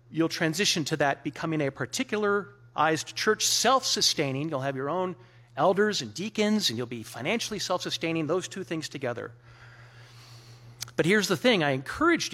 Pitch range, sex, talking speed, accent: 120-195 Hz, male, 150 wpm, American